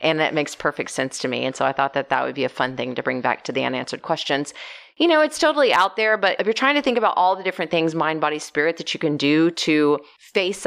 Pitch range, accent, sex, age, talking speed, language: 145-175 Hz, American, female, 30-49, 285 wpm, English